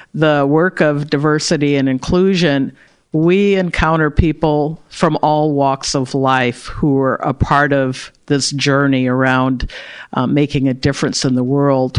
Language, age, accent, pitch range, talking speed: English, 50-69, American, 140-165 Hz, 145 wpm